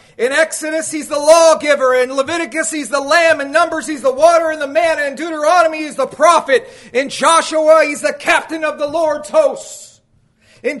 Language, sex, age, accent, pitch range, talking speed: English, male, 40-59, American, 260-310 Hz, 185 wpm